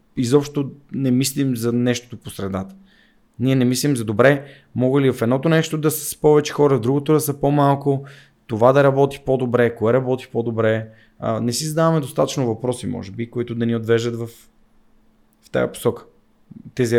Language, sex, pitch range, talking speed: Bulgarian, male, 110-135 Hz, 175 wpm